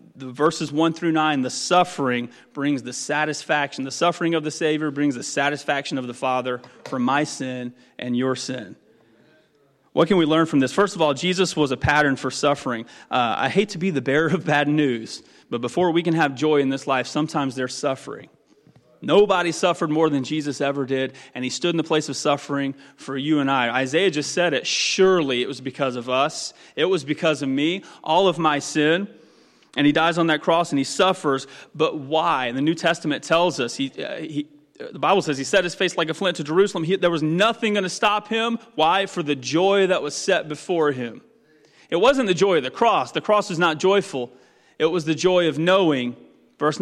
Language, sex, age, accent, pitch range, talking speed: English, male, 30-49, American, 135-170 Hz, 215 wpm